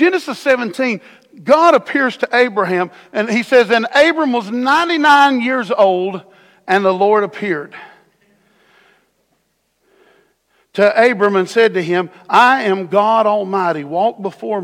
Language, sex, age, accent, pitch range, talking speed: English, male, 50-69, American, 175-240 Hz, 125 wpm